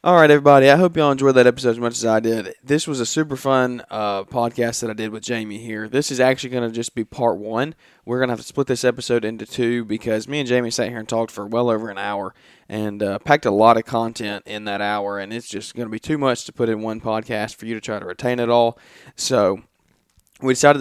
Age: 20-39